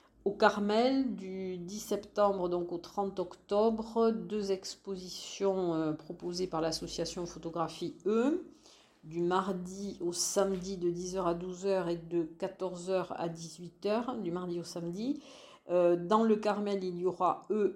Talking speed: 140 wpm